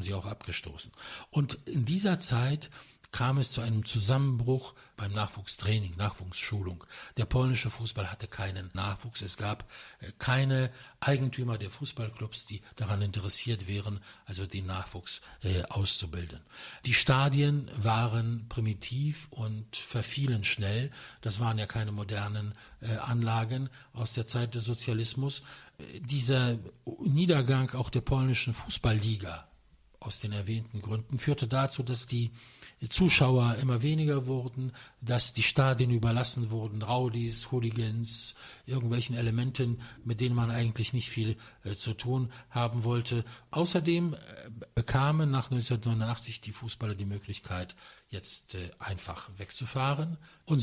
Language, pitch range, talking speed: English, 105-130 Hz, 125 wpm